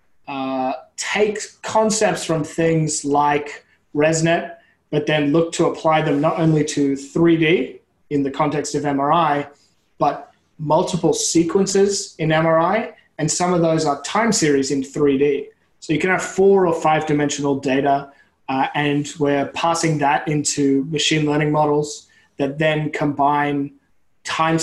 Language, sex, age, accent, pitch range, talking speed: English, male, 20-39, Australian, 140-165 Hz, 140 wpm